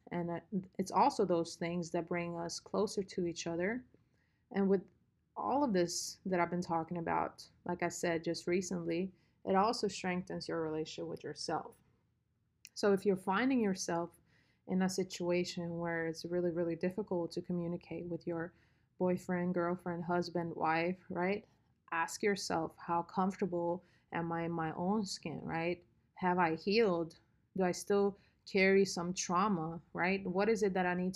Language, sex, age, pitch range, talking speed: English, female, 30-49, 170-195 Hz, 160 wpm